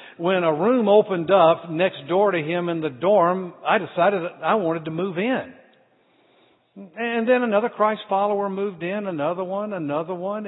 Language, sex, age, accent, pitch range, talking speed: English, male, 50-69, American, 170-235 Hz, 170 wpm